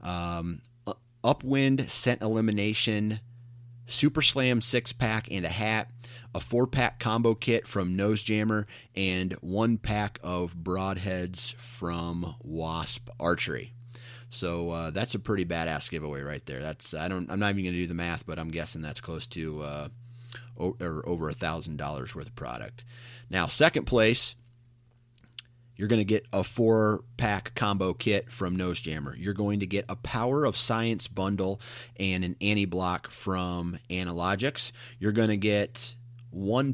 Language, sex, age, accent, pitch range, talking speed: English, male, 30-49, American, 90-120 Hz, 160 wpm